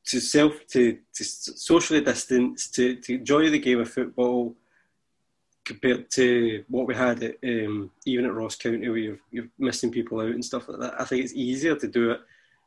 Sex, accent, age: male, British, 20-39